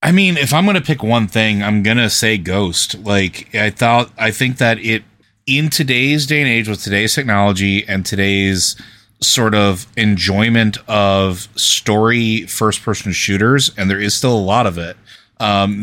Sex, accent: male, American